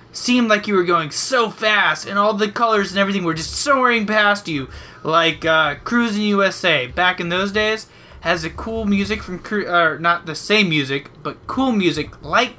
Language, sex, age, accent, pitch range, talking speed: English, male, 20-39, American, 150-205 Hz, 195 wpm